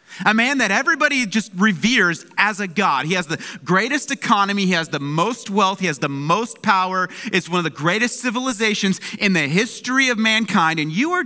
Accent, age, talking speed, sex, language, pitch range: American, 30-49, 205 wpm, male, English, 175-245 Hz